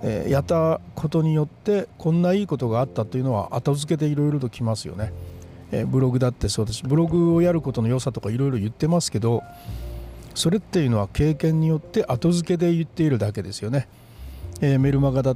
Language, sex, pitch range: Japanese, male, 115-165 Hz